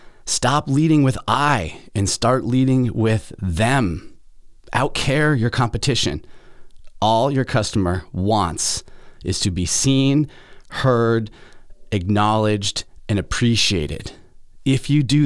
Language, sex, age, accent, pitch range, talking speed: English, male, 30-49, American, 100-130 Hz, 105 wpm